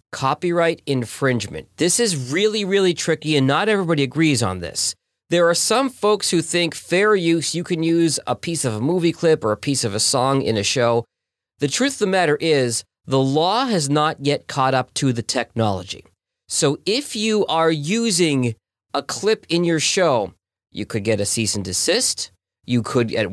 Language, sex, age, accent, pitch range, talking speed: English, male, 40-59, American, 120-170 Hz, 195 wpm